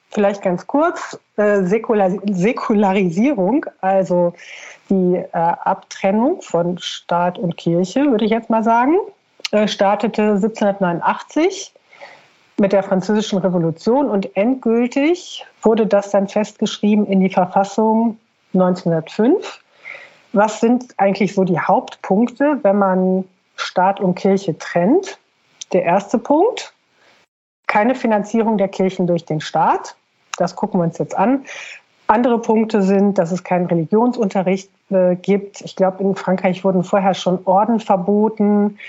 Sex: female